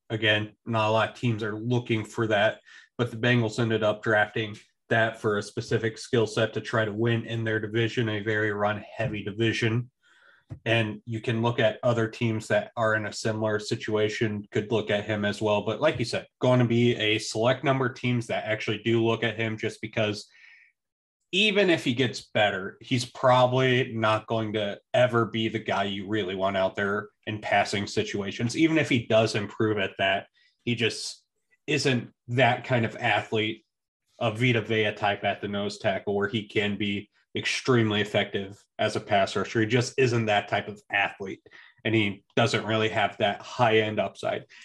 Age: 30-49